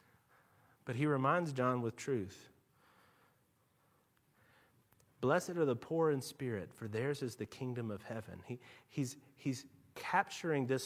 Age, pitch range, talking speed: 30-49, 130-175 Hz, 135 wpm